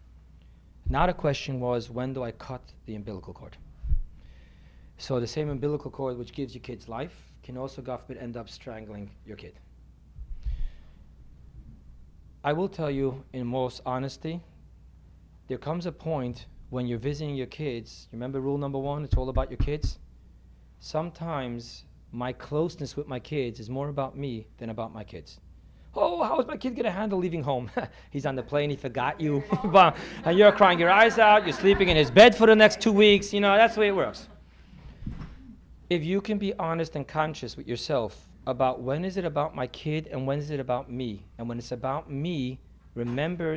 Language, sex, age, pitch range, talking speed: English, male, 30-49, 110-155 Hz, 185 wpm